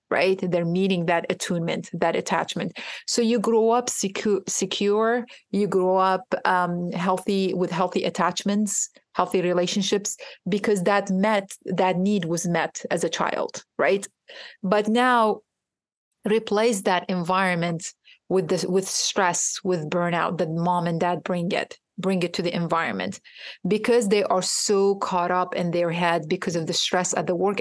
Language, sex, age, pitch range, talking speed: English, female, 30-49, 175-205 Hz, 155 wpm